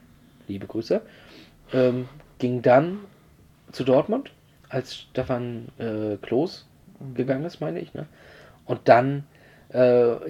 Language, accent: German, German